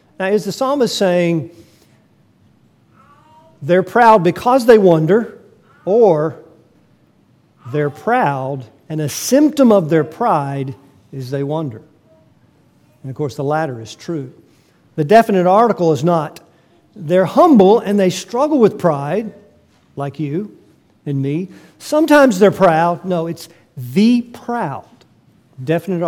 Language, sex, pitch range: English, male, 150-215 Hz